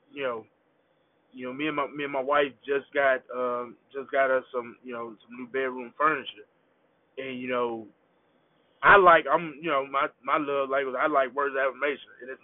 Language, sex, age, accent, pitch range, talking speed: English, male, 20-39, American, 135-180 Hz, 210 wpm